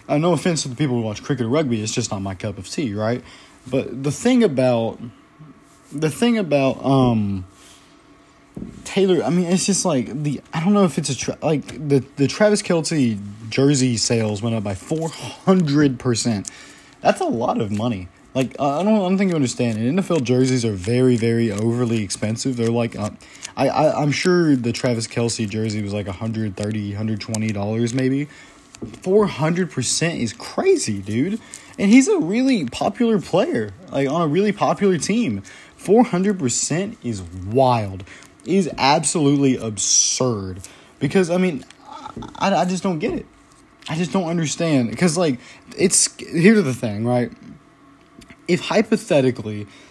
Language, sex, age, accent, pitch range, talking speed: English, male, 20-39, American, 115-170 Hz, 165 wpm